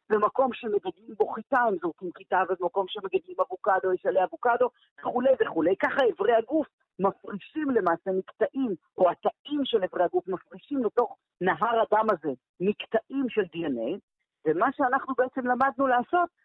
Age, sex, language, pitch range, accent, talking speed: 50-69, female, Hebrew, 195-315 Hz, native, 140 wpm